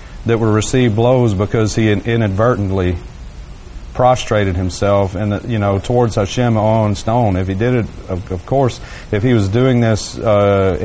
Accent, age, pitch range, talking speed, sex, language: American, 40-59, 95-110 Hz, 155 wpm, male, English